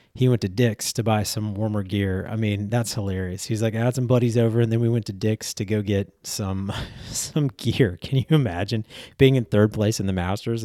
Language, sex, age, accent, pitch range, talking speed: English, male, 30-49, American, 100-120 Hz, 235 wpm